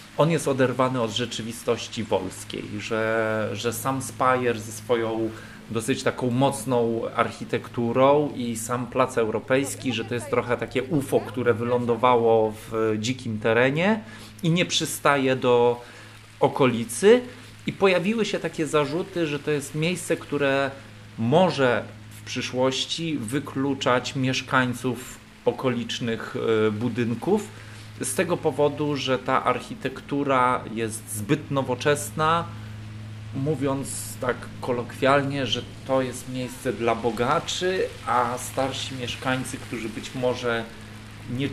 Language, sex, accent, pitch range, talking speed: Polish, male, native, 115-135 Hz, 115 wpm